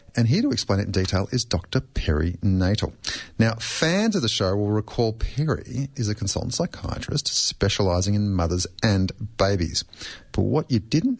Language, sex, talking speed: English, male, 170 wpm